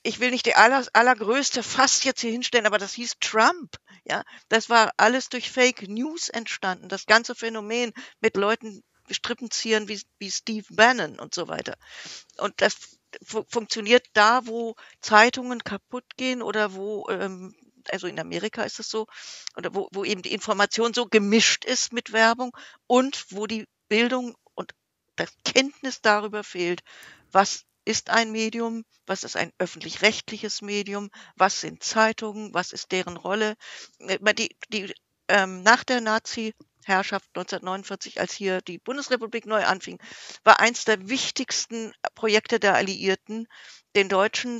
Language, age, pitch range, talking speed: German, 50-69, 195-235 Hz, 145 wpm